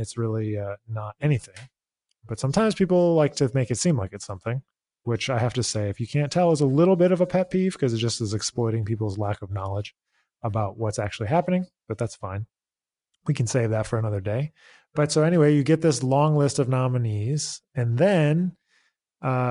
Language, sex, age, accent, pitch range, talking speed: English, male, 20-39, American, 115-145 Hz, 210 wpm